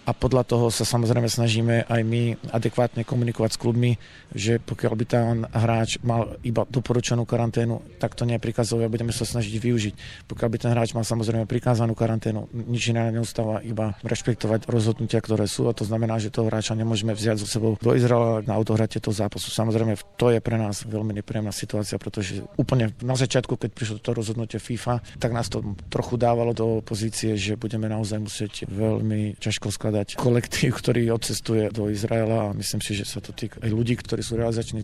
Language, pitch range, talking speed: Slovak, 110-120 Hz, 185 wpm